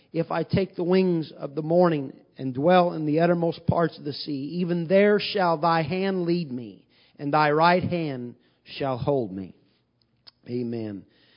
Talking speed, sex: 170 wpm, male